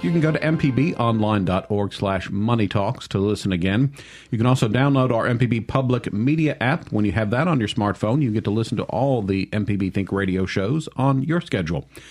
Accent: American